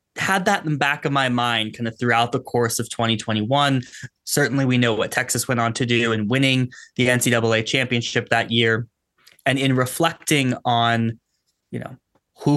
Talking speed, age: 180 wpm, 20-39